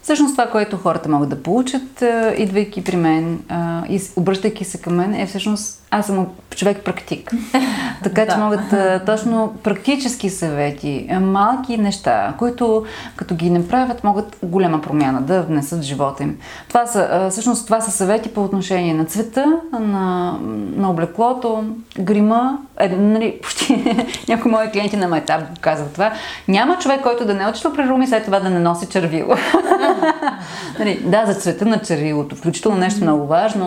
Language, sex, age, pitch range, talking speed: Bulgarian, female, 30-49, 170-225 Hz, 155 wpm